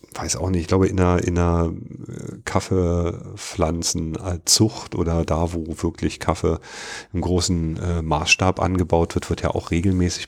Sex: male